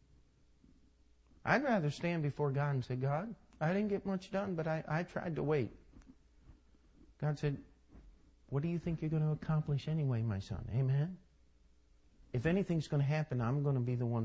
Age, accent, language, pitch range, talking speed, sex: 50-69, American, English, 125-195 Hz, 185 wpm, male